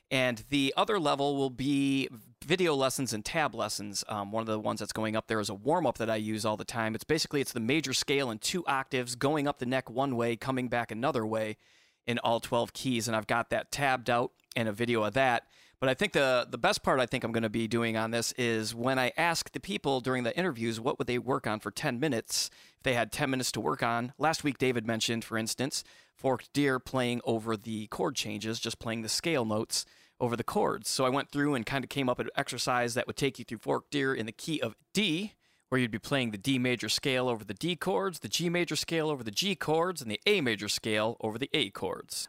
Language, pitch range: English, 115-140 Hz